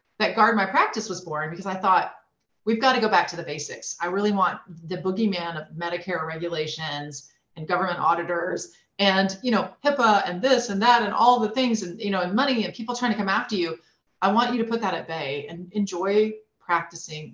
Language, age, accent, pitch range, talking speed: English, 30-49, American, 170-230 Hz, 220 wpm